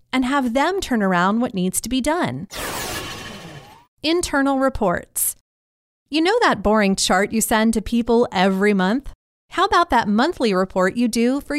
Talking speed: 160 wpm